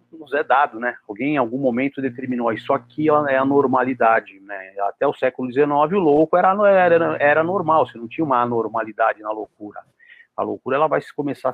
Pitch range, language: 120-170 Hz, Portuguese